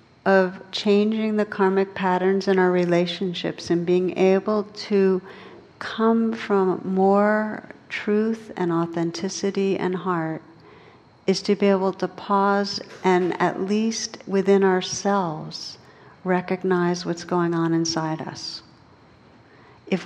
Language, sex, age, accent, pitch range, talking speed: English, female, 60-79, American, 170-200 Hz, 115 wpm